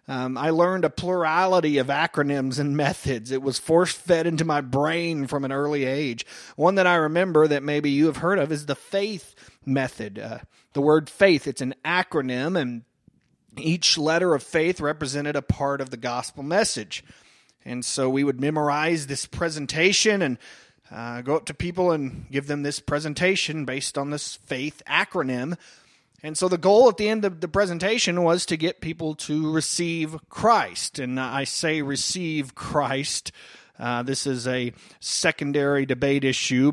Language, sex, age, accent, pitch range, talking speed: English, male, 30-49, American, 125-160 Hz, 170 wpm